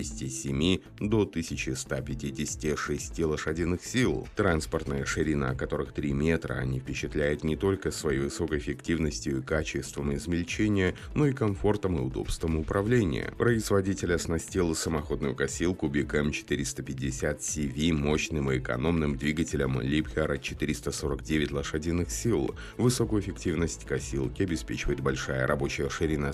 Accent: native